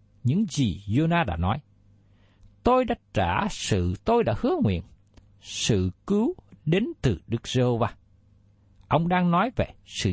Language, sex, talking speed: Vietnamese, male, 140 wpm